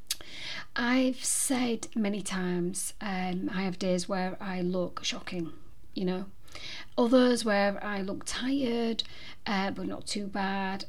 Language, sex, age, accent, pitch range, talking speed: English, female, 40-59, British, 185-215 Hz, 130 wpm